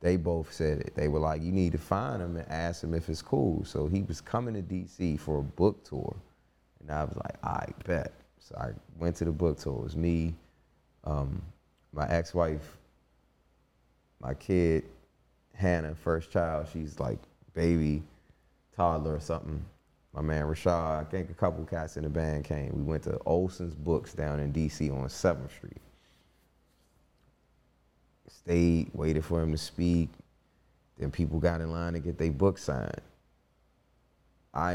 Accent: American